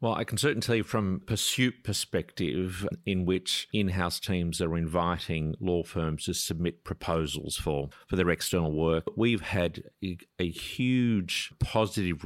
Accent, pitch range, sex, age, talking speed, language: Australian, 85-100 Hz, male, 50-69, 145 wpm, English